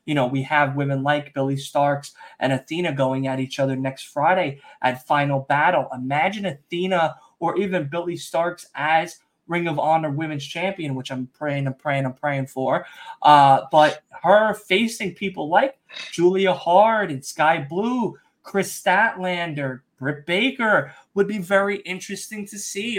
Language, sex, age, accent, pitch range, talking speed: English, male, 20-39, American, 145-185 Hz, 160 wpm